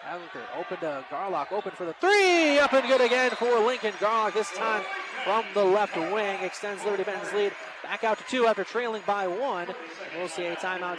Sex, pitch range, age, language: male, 185-230 Hz, 30-49, English